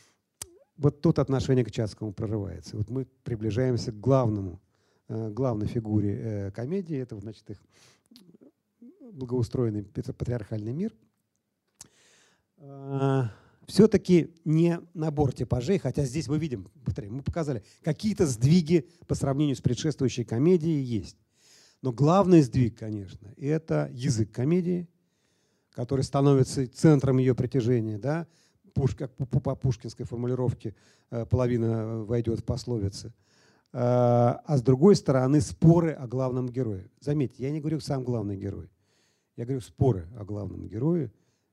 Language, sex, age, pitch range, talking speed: Russian, male, 40-59, 115-150 Hz, 115 wpm